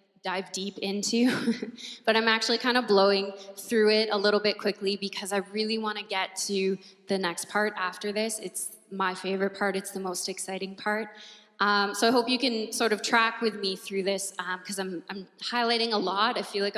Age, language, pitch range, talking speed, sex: 20-39, English, 190-215 Hz, 210 wpm, female